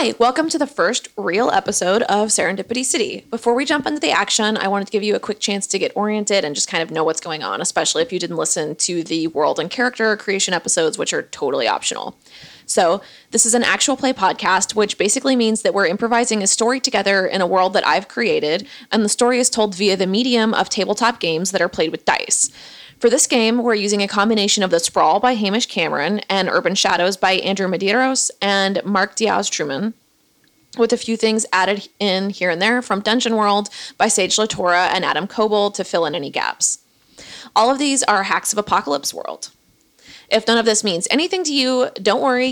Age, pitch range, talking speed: 20-39, 190-235 Hz, 215 wpm